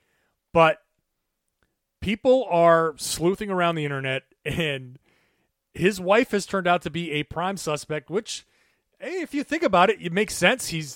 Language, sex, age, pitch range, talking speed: English, male, 30-49, 140-190 Hz, 160 wpm